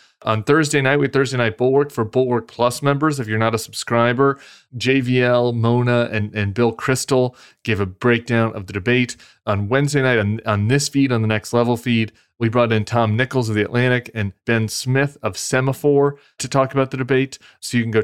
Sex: male